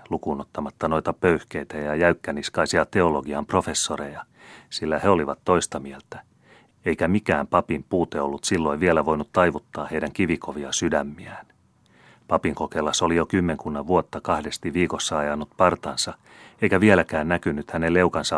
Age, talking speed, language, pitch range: 30-49, 125 wpm, Finnish, 75-90 Hz